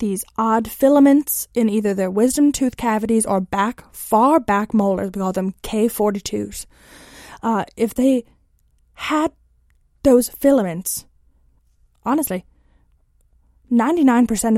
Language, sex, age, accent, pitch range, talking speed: English, female, 20-39, American, 180-235 Hz, 105 wpm